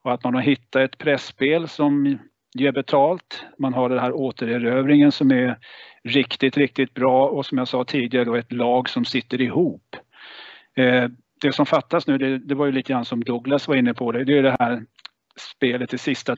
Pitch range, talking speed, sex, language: 125-145 Hz, 200 wpm, male, Swedish